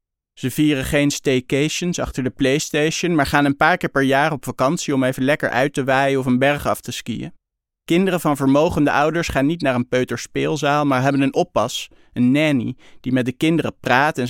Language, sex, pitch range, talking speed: Dutch, male, 125-150 Hz, 205 wpm